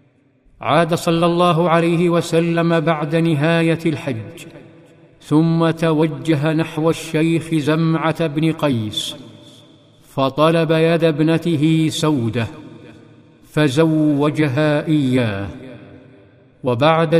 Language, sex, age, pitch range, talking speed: Arabic, male, 50-69, 145-165 Hz, 75 wpm